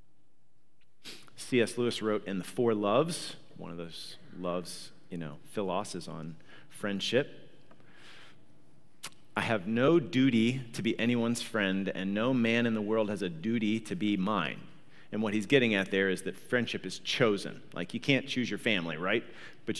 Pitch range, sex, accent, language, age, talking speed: 95-130 Hz, male, American, English, 40-59, 165 wpm